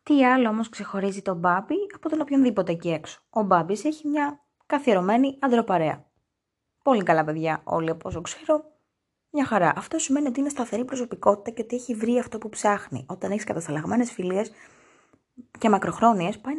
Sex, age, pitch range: female, 20-39, 175-255 Hz